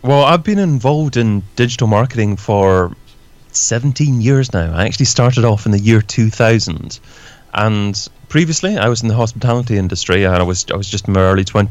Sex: male